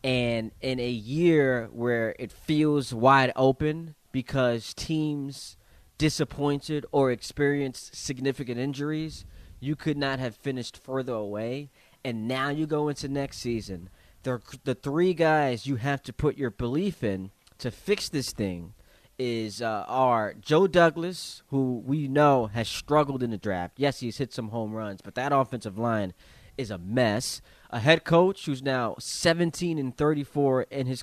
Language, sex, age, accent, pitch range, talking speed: English, male, 20-39, American, 115-150 Hz, 155 wpm